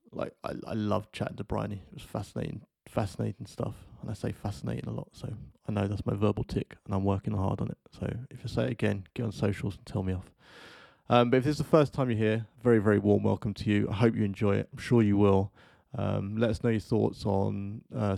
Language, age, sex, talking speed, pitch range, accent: English, 20-39, male, 255 wpm, 100-115 Hz, British